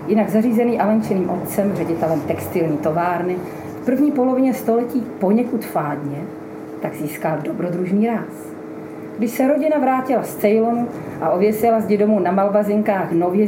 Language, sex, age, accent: Czech, female, 40-59, native